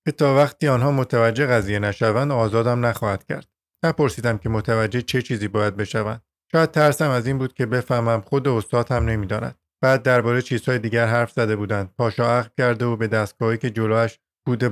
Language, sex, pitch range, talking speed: Persian, male, 115-135 Hz, 185 wpm